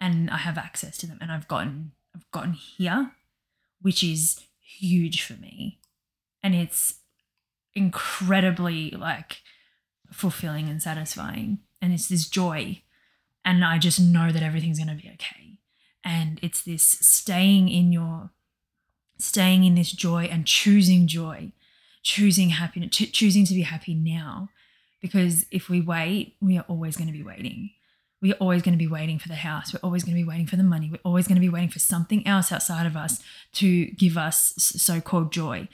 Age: 20-39